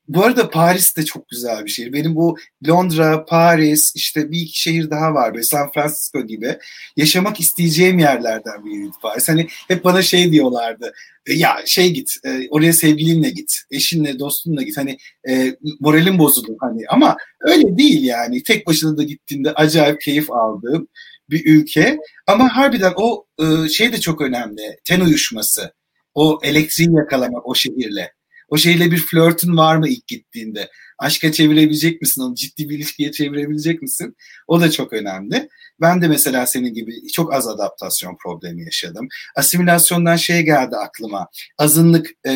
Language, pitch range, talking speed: Turkish, 145-180 Hz, 150 wpm